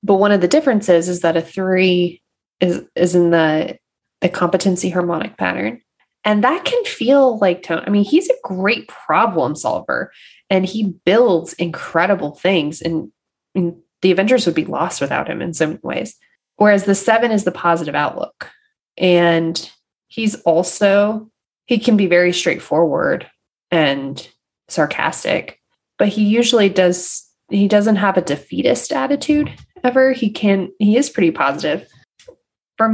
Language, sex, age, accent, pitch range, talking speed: English, female, 20-39, American, 170-220 Hz, 150 wpm